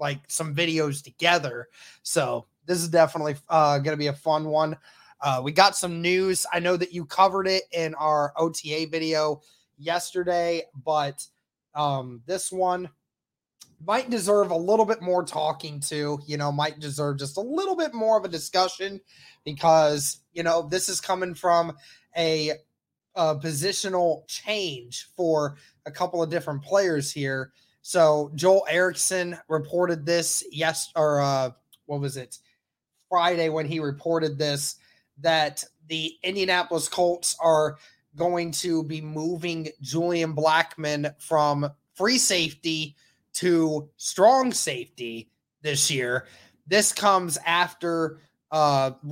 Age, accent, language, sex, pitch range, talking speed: 20-39, American, English, male, 150-175 Hz, 135 wpm